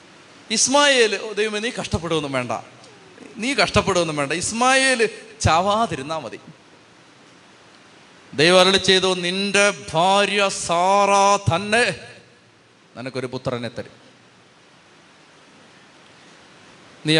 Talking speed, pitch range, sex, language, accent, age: 45 wpm, 160-205 Hz, male, Malayalam, native, 30-49